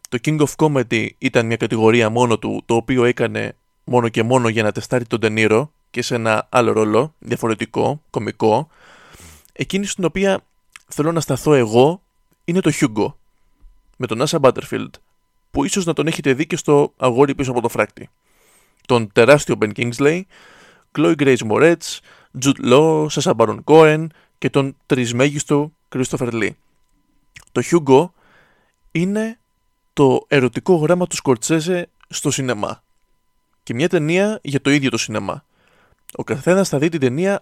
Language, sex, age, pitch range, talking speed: Greek, male, 20-39, 120-165 Hz, 155 wpm